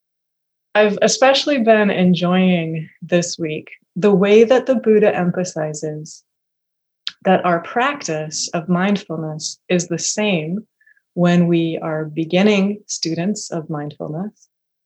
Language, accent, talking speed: English, American, 110 wpm